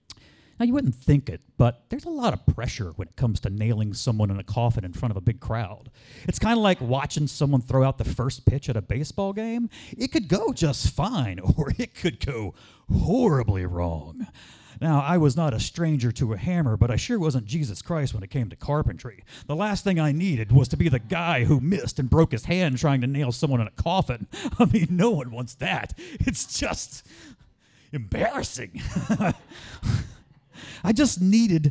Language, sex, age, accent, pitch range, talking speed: English, male, 40-59, American, 115-175 Hz, 205 wpm